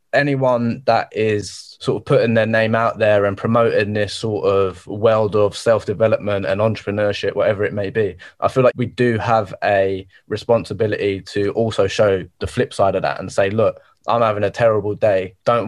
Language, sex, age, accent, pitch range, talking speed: English, male, 20-39, British, 105-125 Hz, 190 wpm